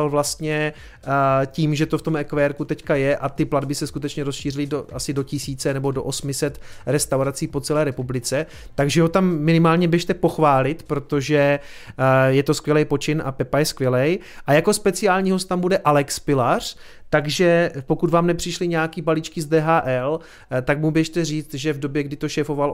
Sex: male